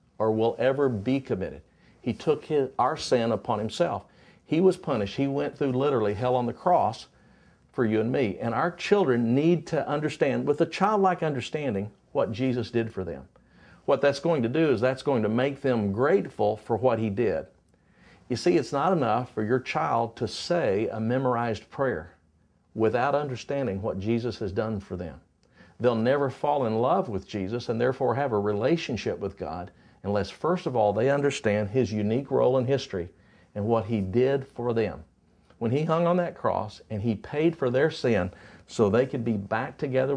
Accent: American